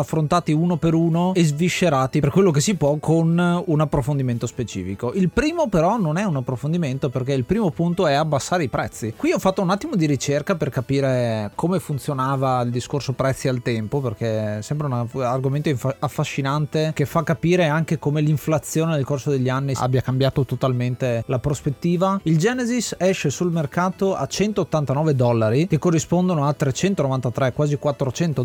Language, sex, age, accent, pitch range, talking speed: Italian, male, 30-49, native, 130-170 Hz, 170 wpm